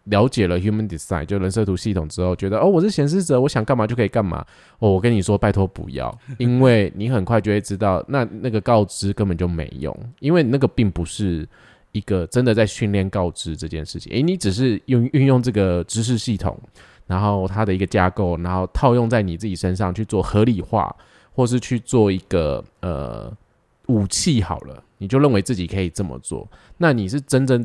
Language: Chinese